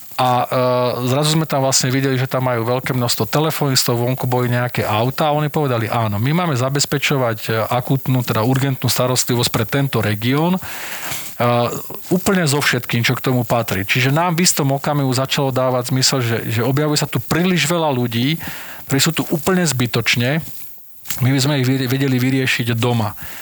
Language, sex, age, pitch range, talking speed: Slovak, male, 40-59, 120-145 Hz, 170 wpm